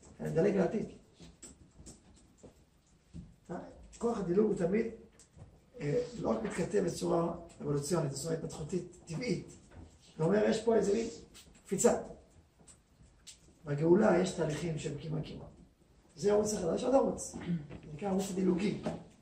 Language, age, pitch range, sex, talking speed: Hebrew, 40-59, 160-210 Hz, male, 110 wpm